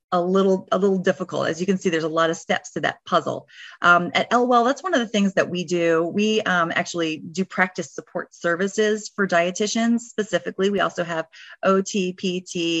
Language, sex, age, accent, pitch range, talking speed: English, female, 30-49, American, 170-210 Hz, 200 wpm